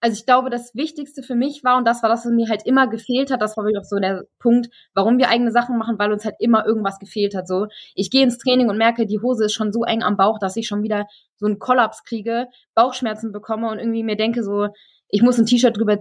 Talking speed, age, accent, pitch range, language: 270 wpm, 20-39, German, 205-240 Hz, German